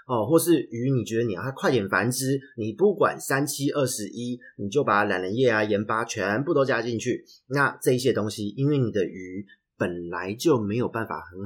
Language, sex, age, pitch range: Chinese, male, 30-49, 105-145 Hz